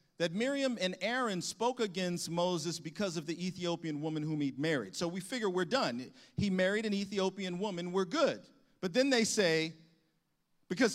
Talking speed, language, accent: 175 wpm, English, American